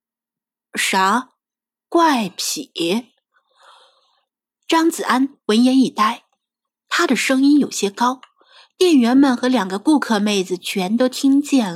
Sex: female